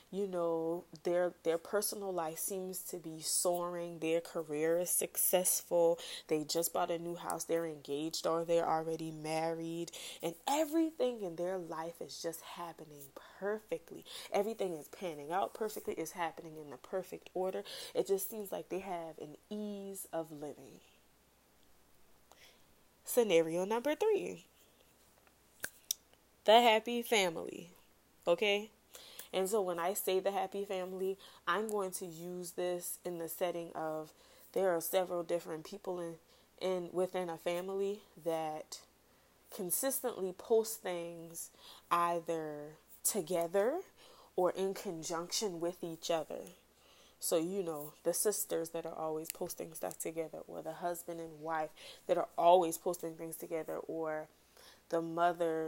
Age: 20-39